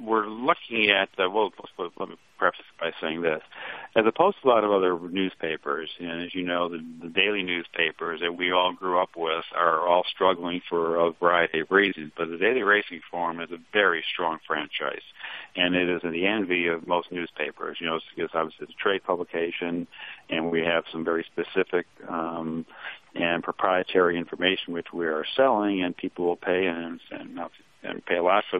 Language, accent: English, American